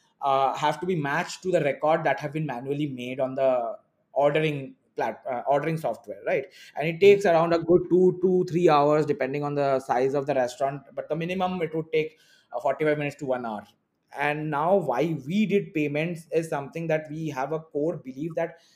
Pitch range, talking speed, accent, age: 145-180 Hz, 210 wpm, Indian, 20-39